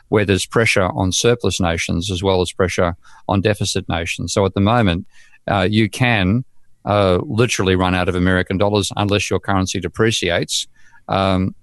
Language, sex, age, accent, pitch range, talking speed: English, male, 50-69, Australian, 90-105 Hz, 160 wpm